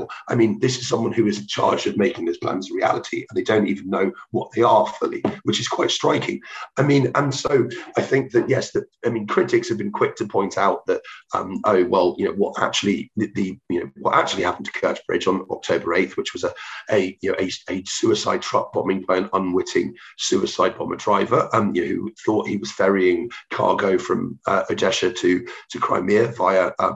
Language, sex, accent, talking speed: English, male, British, 225 wpm